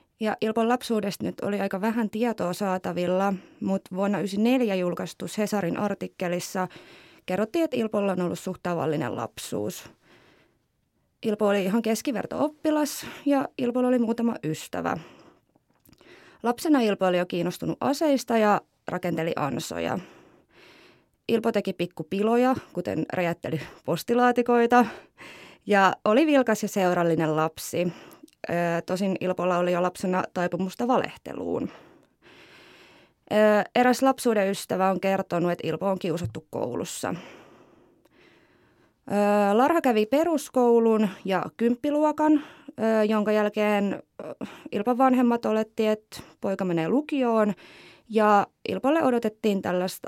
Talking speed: 105 wpm